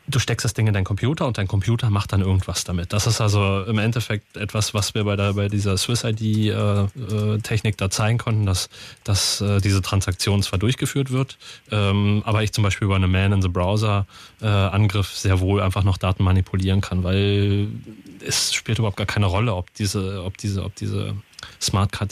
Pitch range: 100-110 Hz